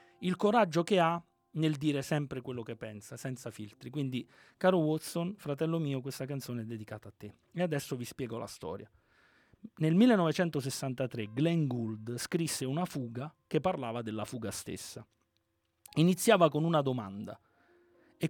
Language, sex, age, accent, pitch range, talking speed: Italian, male, 30-49, native, 115-155 Hz, 150 wpm